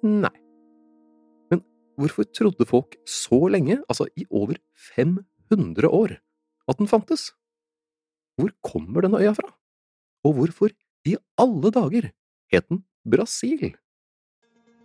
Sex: male